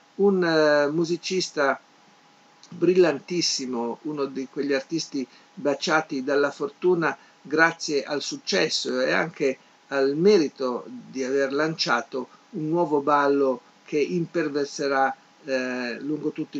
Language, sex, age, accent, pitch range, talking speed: Italian, male, 50-69, native, 135-165 Hz, 100 wpm